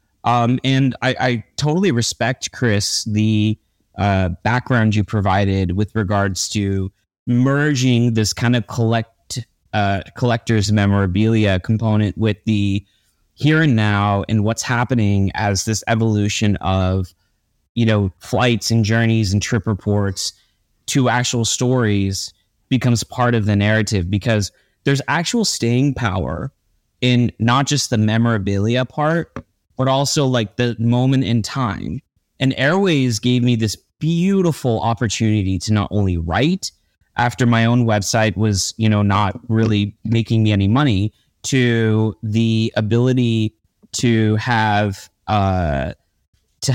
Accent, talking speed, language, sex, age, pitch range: American, 130 wpm, English, male, 30-49, 105-125 Hz